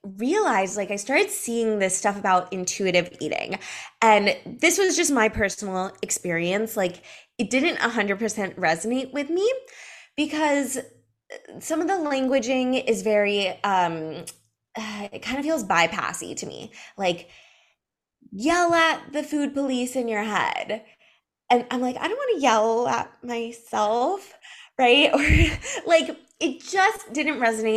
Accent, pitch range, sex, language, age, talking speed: American, 190-250 Hz, female, English, 20-39, 140 wpm